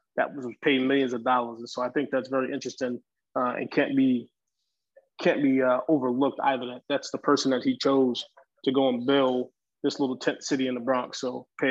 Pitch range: 130-150 Hz